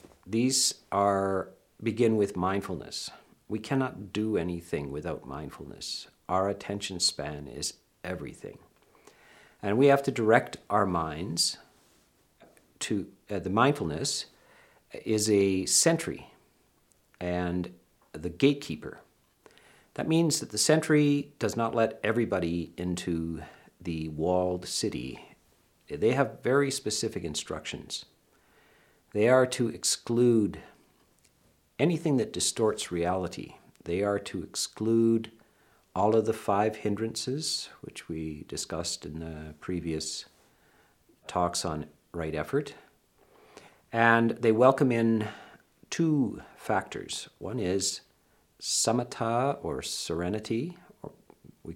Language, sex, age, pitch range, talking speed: English, male, 50-69, 90-115 Hz, 105 wpm